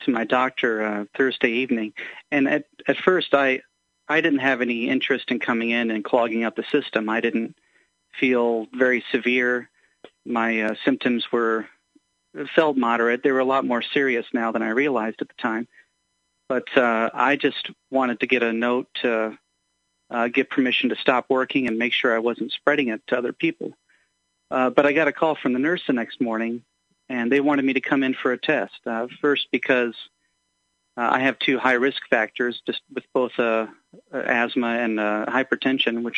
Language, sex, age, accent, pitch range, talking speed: English, male, 40-59, American, 115-135 Hz, 190 wpm